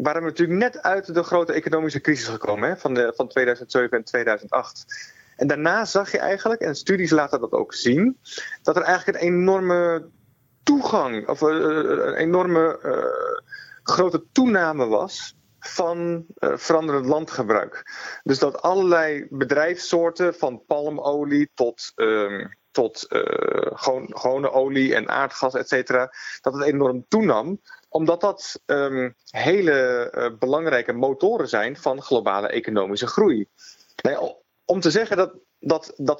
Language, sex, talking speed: Dutch, male, 140 wpm